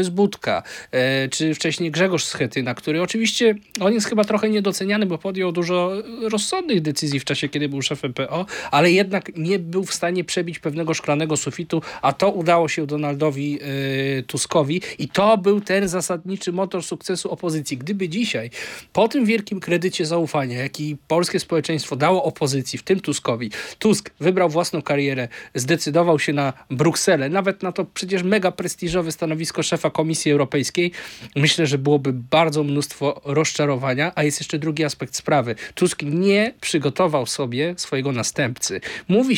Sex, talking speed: male, 150 wpm